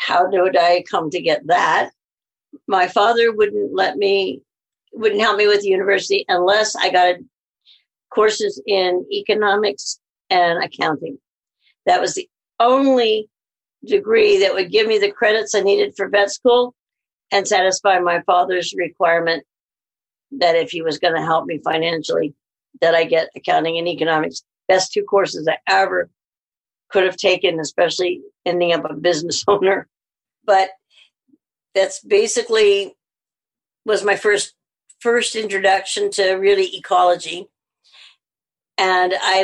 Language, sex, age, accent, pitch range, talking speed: English, female, 50-69, American, 175-220 Hz, 135 wpm